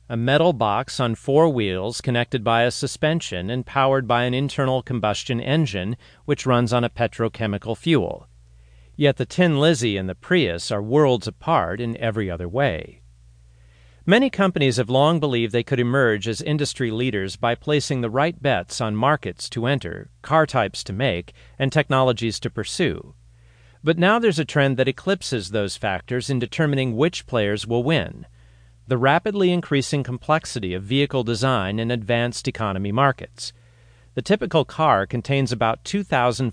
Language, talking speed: English, 160 wpm